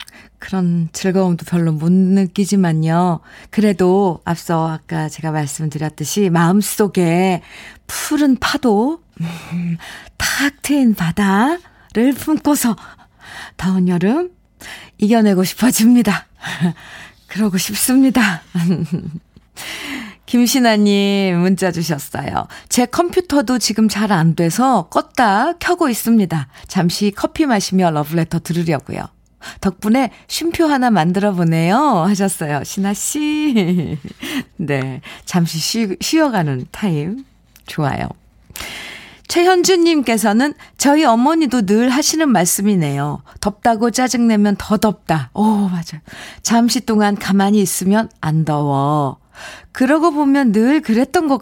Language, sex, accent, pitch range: Korean, female, native, 165-245 Hz